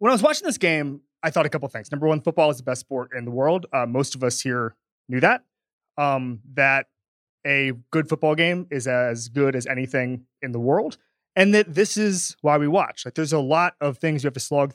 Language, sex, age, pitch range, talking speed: English, male, 20-39, 130-160 Hz, 245 wpm